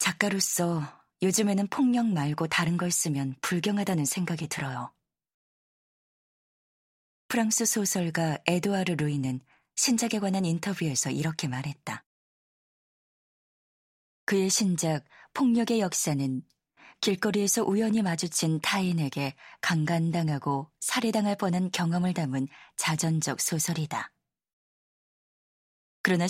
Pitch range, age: 155-200 Hz, 20-39